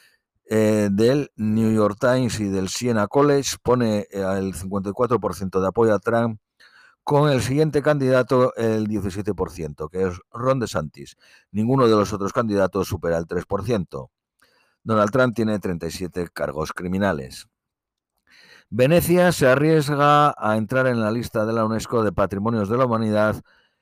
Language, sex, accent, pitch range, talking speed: Spanish, male, Spanish, 95-120 Hz, 140 wpm